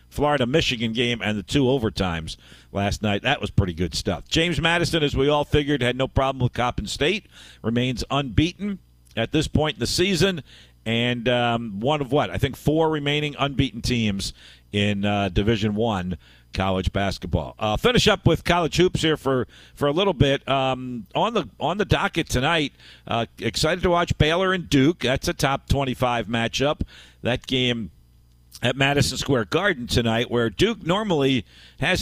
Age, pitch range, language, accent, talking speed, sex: 50-69, 105-140 Hz, English, American, 175 wpm, male